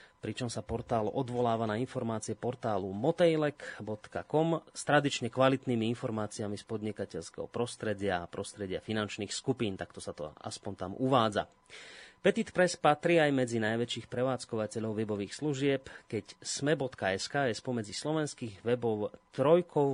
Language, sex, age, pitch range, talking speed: Slovak, male, 30-49, 100-130 Hz, 120 wpm